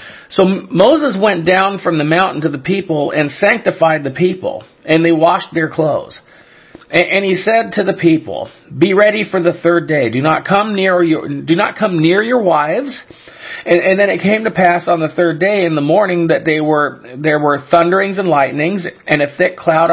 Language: English